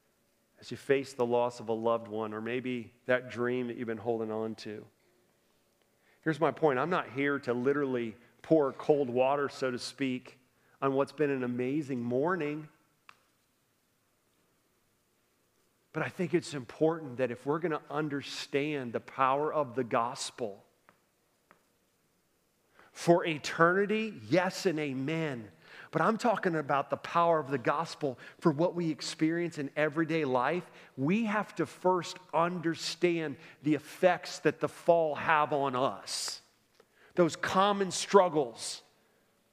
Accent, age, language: American, 40-59, English